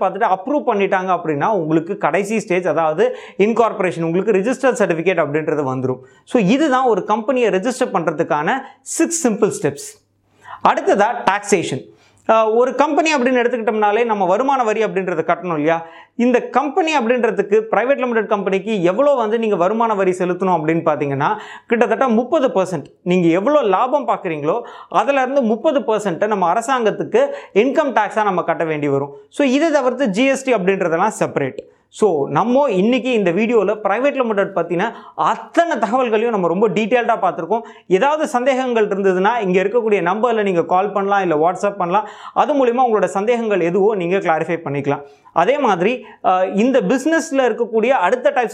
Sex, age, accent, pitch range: male, 30-49, native, 180-245 Hz